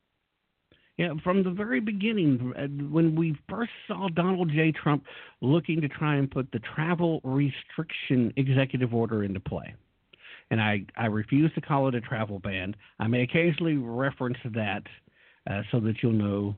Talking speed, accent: 155 wpm, American